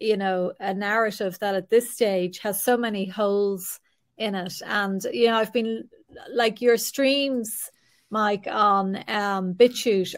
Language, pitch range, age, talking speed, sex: English, 190-235 Hz, 30-49, 155 wpm, female